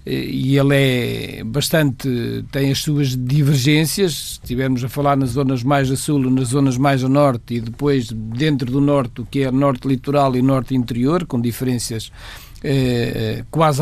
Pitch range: 130-180 Hz